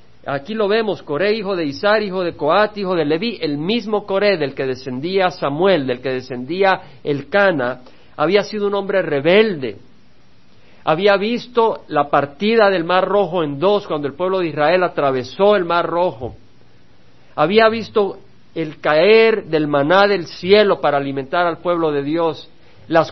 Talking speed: 165 wpm